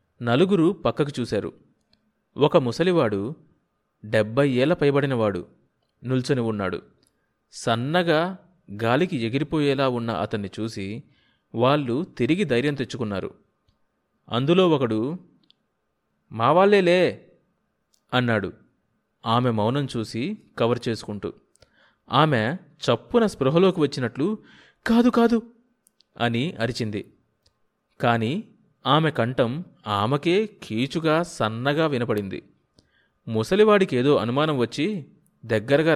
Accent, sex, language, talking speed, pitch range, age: native, male, Telugu, 80 wpm, 115-175 Hz, 30-49